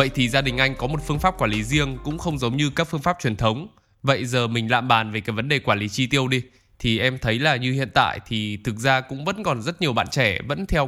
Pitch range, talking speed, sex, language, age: 120-170 Hz, 300 wpm, male, Vietnamese, 10-29